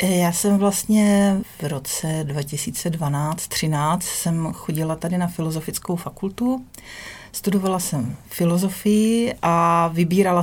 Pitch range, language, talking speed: 185-210 Hz, Czech, 105 wpm